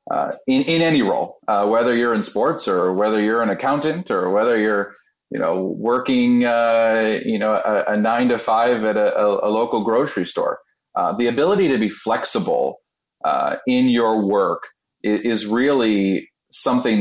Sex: male